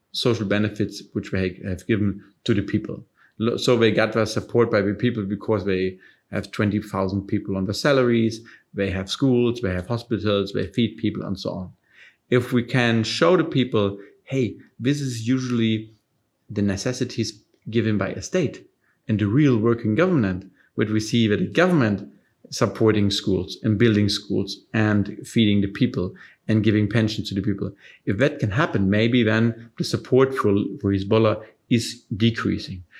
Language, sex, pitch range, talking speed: Arabic, male, 100-120 Hz, 160 wpm